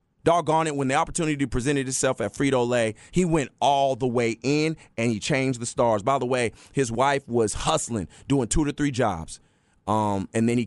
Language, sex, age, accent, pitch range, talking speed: English, male, 30-49, American, 120-170 Hz, 200 wpm